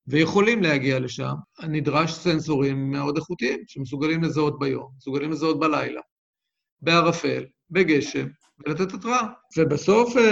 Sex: male